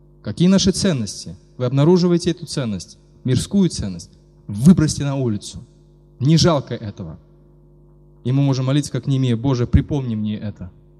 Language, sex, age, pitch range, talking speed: Russian, male, 20-39, 115-160 Hz, 135 wpm